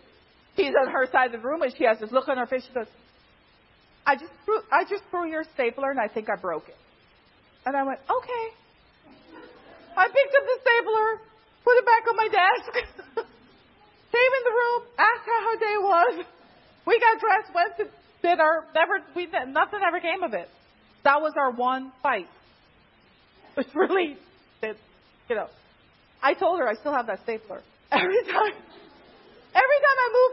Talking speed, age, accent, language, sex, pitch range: 180 wpm, 40-59, American, English, female, 250-395 Hz